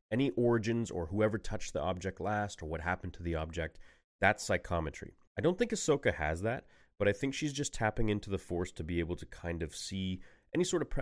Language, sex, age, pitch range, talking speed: English, male, 30-49, 85-110 Hz, 225 wpm